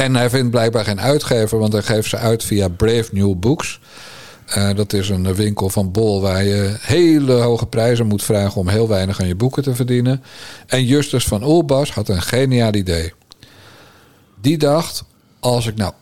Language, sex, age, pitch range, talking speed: Dutch, male, 50-69, 100-130 Hz, 185 wpm